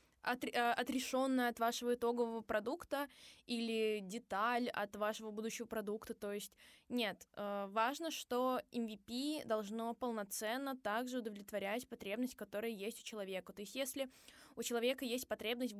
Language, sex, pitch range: Russian, female, 220-255 Hz